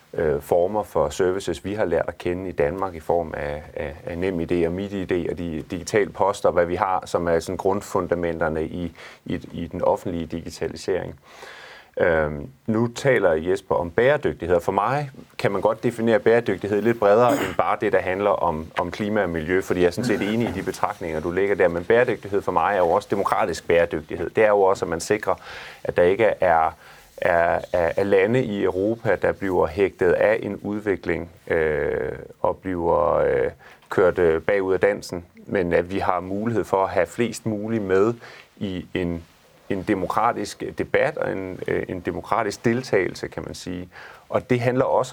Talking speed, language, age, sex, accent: 185 wpm, Danish, 30-49, male, native